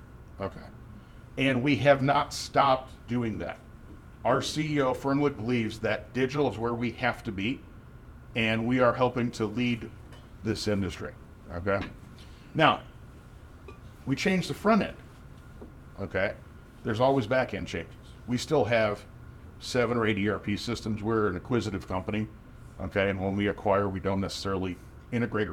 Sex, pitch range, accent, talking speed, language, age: male, 105-130 Hz, American, 140 wpm, English, 40-59